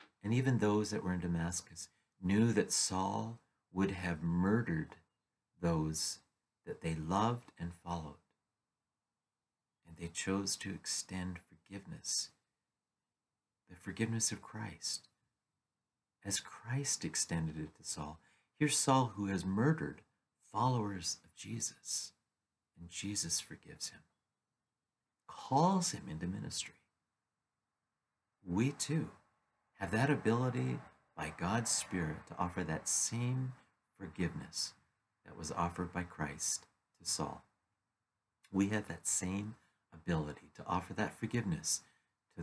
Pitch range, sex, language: 85-115 Hz, male, English